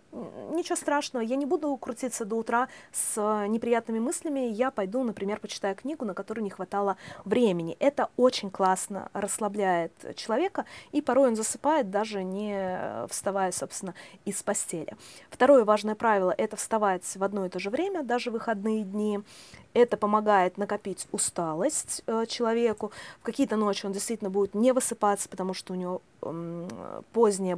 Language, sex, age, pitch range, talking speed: Russian, female, 20-39, 195-245 Hz, 155 wpm